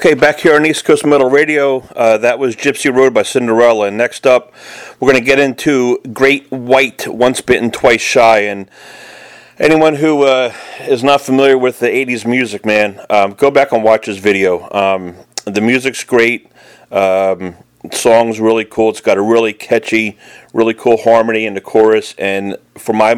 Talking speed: 180 wpm